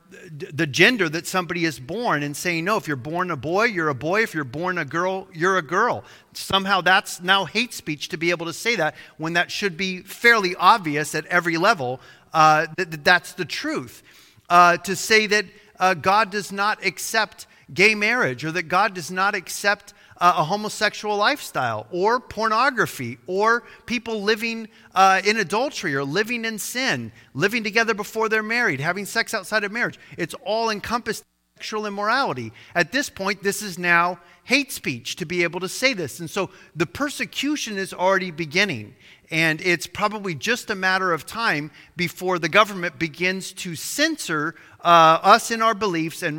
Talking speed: 180 wpm